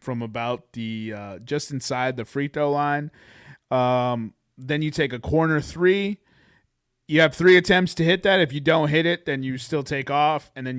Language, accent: English, American